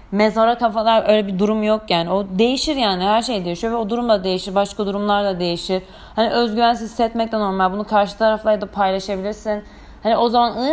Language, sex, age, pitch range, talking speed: Turkish, female, 30-49, 185-225 Hz, 195 wpm